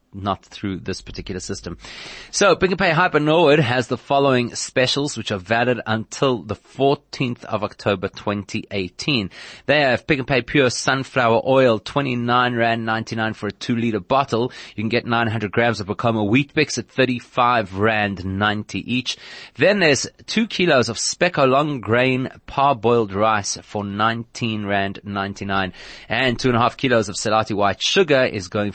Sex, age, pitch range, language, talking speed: male, 30-49, 100-130 Hz, English, 165 wpm